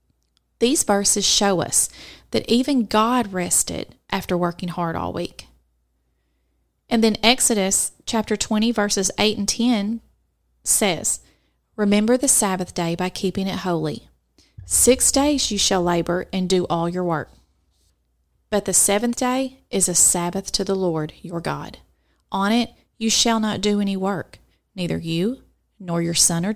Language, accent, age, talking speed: English, American, 30-49, 150 wpm